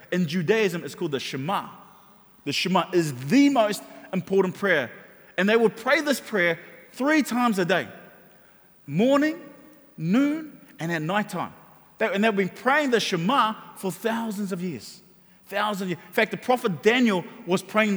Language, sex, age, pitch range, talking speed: English, male, 30-49, 165-215 Hz, 160 wpm